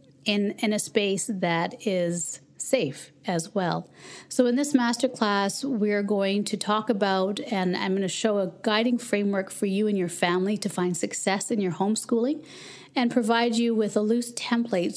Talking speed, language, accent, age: 175 wpm, English, American, 40-59